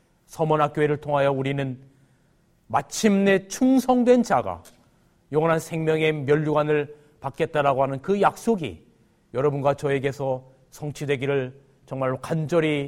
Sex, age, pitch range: male, 40-59, 125-170 Hz